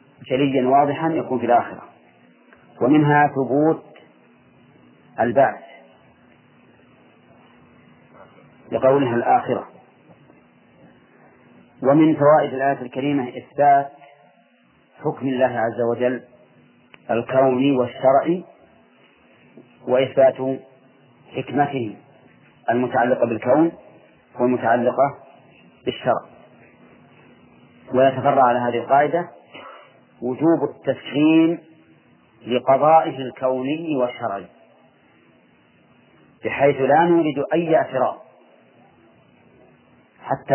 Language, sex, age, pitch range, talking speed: Arabic, male, 40-59, 125-145 Hz, 60 wpm